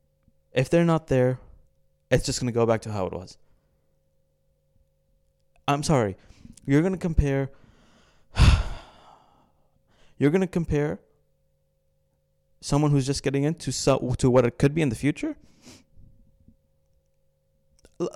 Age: 20-39